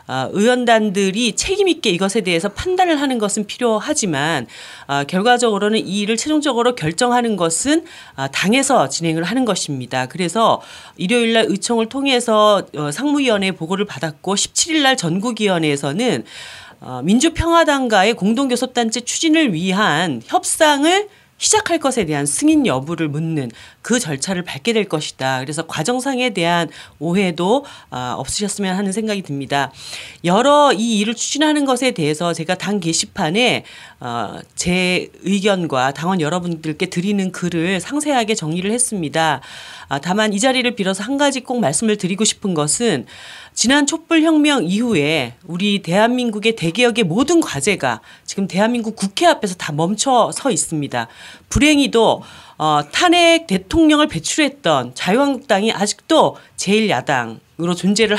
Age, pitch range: 40-59, 165-250 Hz